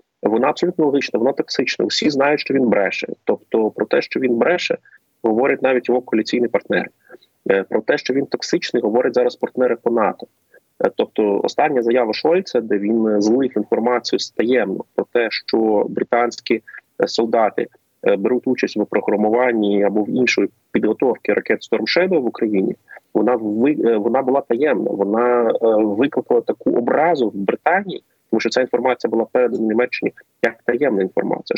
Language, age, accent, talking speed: Ukrainian, 30-49, native, 150 wpm